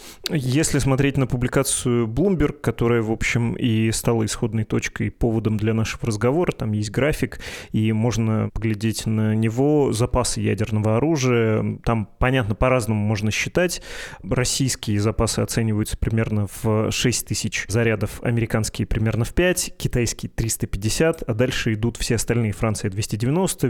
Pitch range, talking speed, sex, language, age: 110-130 Hz, 135 wpm, male, Russian, 20-39